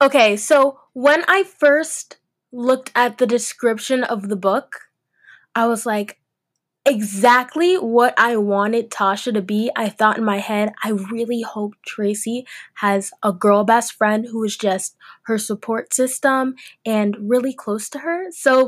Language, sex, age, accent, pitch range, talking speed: English, female, 10-29, American, 215-280 Hz, 155 wpm